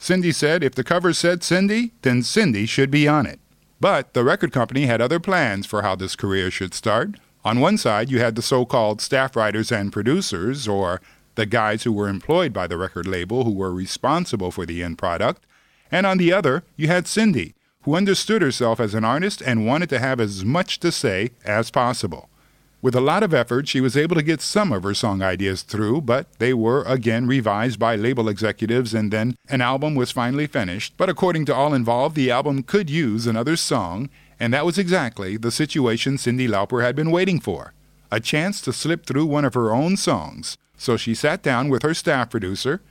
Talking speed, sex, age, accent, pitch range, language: 210 wpm, male, 50-69, American, 110-160 Hz, German